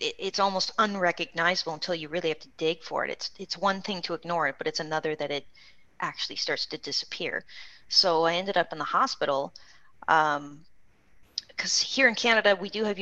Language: English